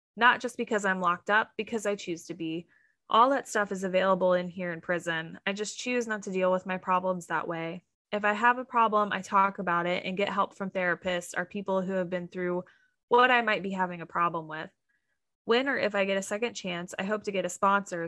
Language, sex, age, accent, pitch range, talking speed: English, female, 20-39, American, 180-210 Hz, 240 wpm